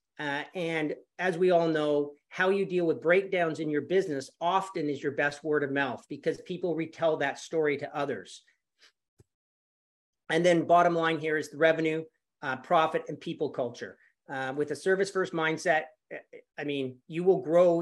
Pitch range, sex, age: 140-165 Hz, male, 40-59